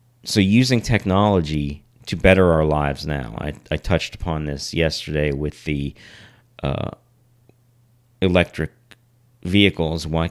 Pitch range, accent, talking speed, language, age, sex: 85-120 Hz, American, 115 wpm, English, 40-59, male